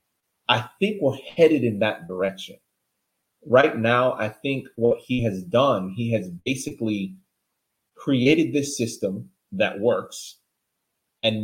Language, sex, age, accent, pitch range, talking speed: English, male, 30-49, American, 105-135 Hz, 125 wpm